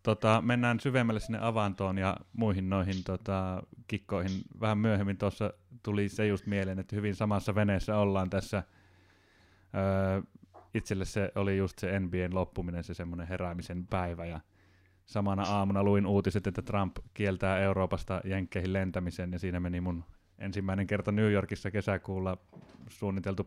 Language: Finnish